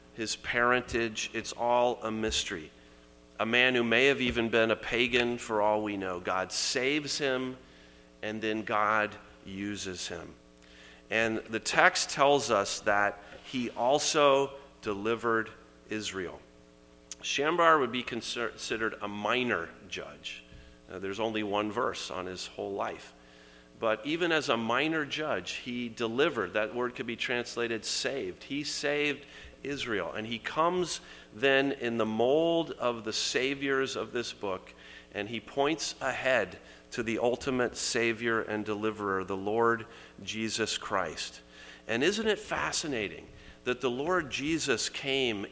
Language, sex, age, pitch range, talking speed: English, male, 40-59, 100-130 Hz, 140 wpm